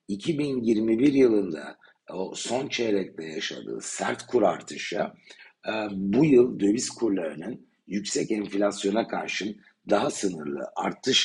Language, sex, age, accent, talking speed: Turkish, male, 60-79, native, 100 wpm